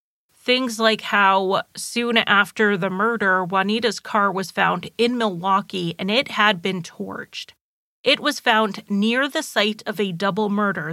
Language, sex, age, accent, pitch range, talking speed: English, female, 30-49, American, 200-235 Hz, 155 wpm